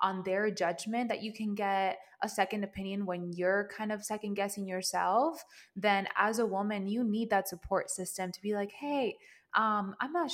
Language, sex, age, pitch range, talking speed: English, female, 20-39, 185-220 Hz, 190 wpm